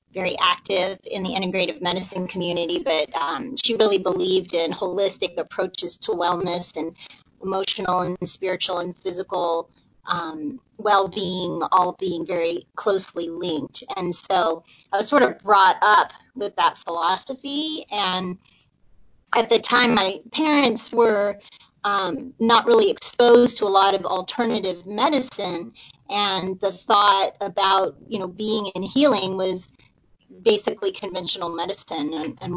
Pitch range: 180-230 Hz